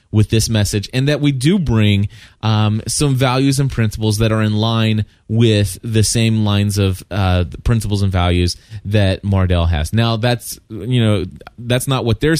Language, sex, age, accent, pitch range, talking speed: English, male, 30-49, American, 100-125 Hz, 180 wpm